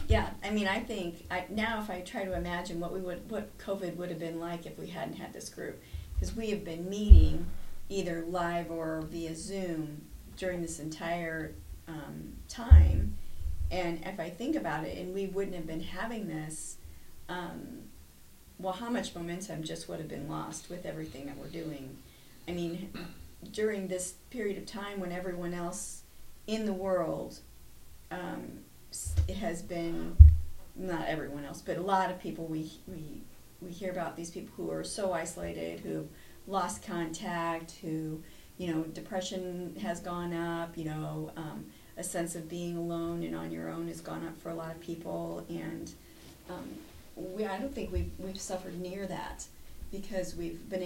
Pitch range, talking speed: 145-185 Hz, 175 wpm